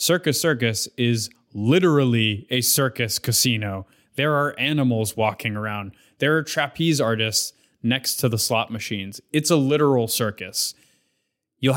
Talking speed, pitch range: 135 wpm, 115-145 Hz